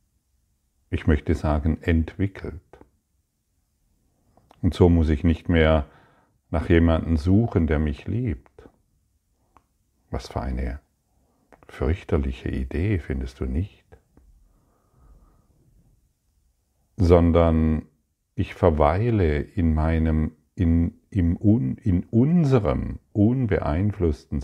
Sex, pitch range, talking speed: male, 75-95 Hz, 85 wpm